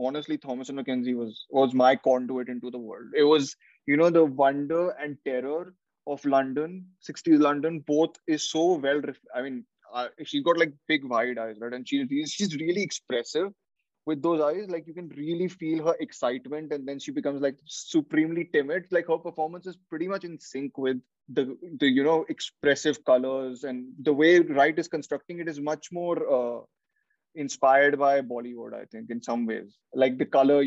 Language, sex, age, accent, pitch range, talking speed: English, male, 20-39, Indian, 130-165 Hz, 185 wpm